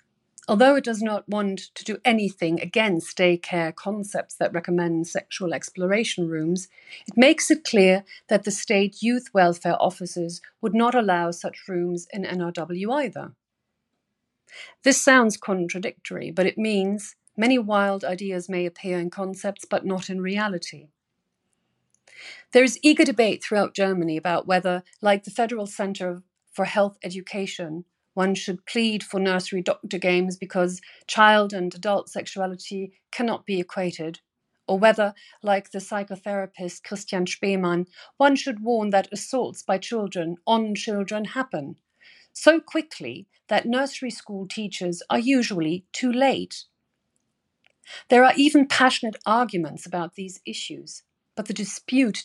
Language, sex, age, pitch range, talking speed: English, female, 40-59, 180-220 Hz, 135 wpm